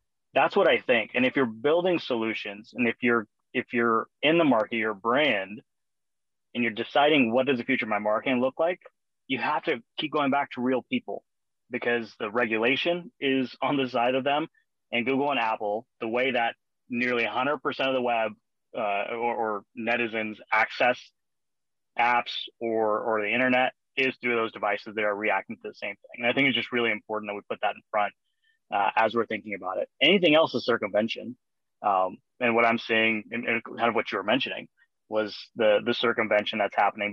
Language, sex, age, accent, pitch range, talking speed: English, male, 30-49, American, 105-130 Hz, 200 wpm